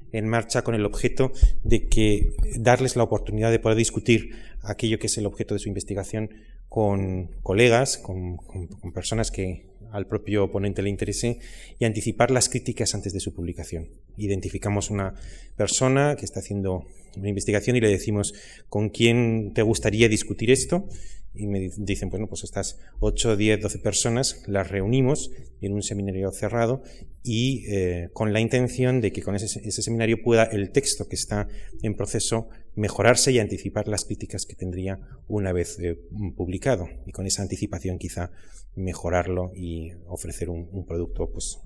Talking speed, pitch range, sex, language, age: 165 wpm, 95-115 Hz, male, Spanish, 30-49